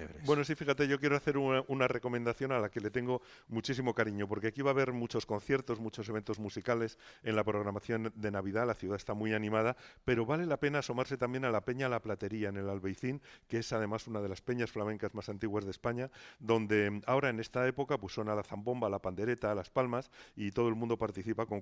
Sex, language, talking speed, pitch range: male, Spanish, 225 wpm, 105-130 Hz